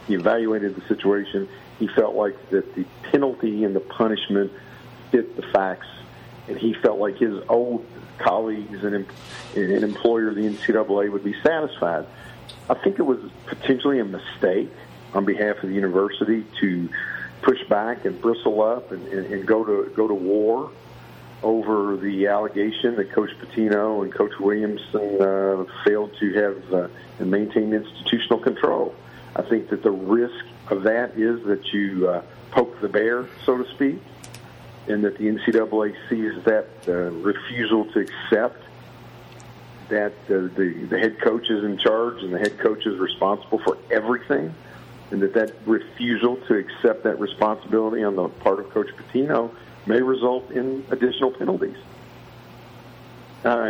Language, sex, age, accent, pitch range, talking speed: English, male, 50-69, American, 100-120 Hz, 155 wpm